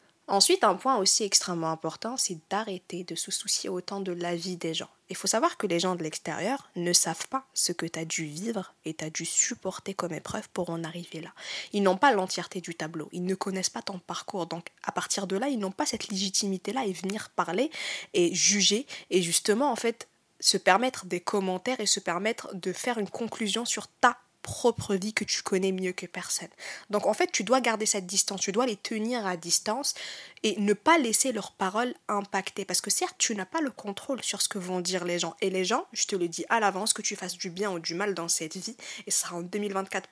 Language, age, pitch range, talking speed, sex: French, 20-39, 180-220 Hz, 235 wpm, female